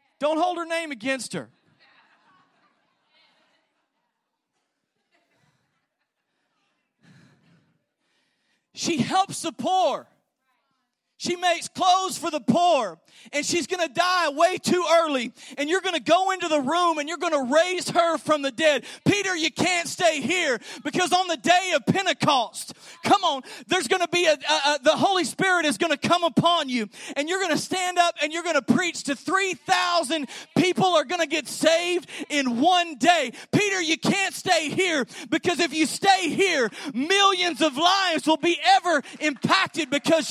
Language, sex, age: English, male, 40-59